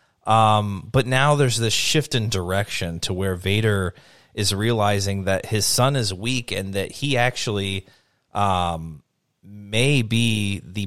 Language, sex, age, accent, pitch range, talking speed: English, male, 30-49, American, 95-110 Hz, 145 wpm